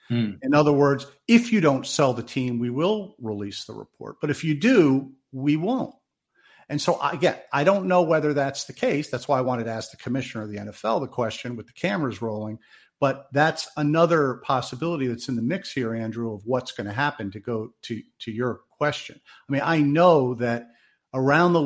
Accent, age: American, 50-69